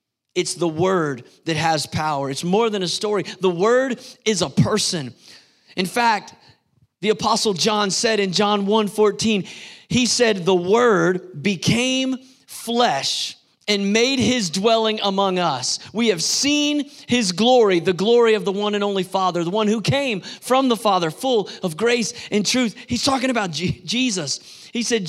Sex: male